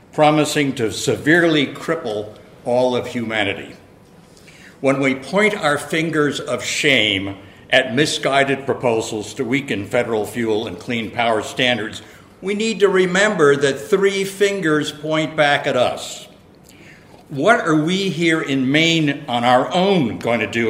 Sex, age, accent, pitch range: male, 60-79, American, 120-160 Hz